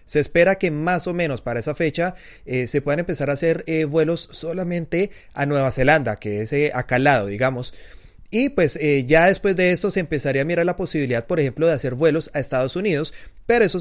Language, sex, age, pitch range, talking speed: Spanish, male, 30-49, 130-160 Hz, 215 wpm